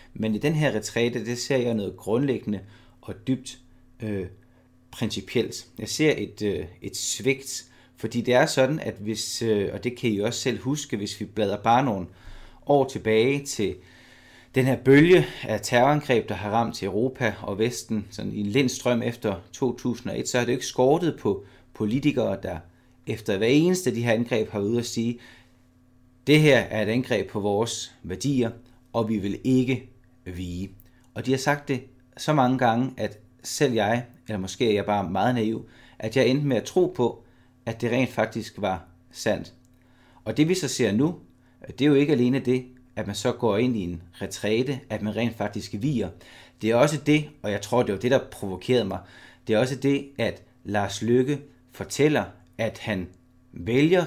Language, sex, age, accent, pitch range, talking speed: Danish, male, 30-49, native, 105-130 Hz, 195 wpm